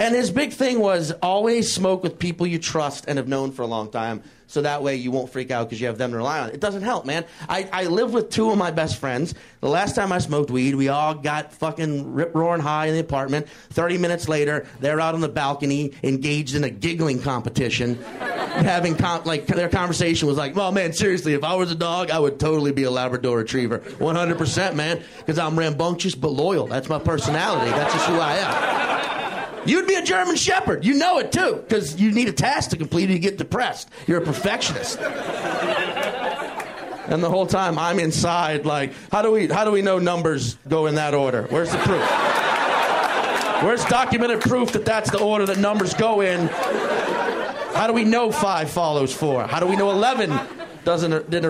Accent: American